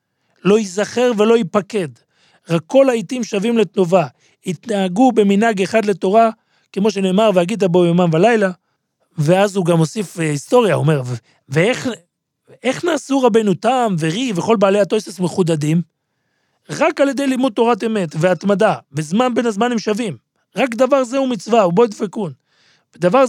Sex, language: male, Hebrew